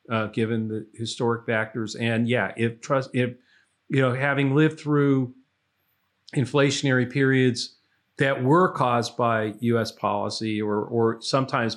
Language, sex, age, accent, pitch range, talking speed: English, male, 40-59, American, 110-135 Hz, 135 wpm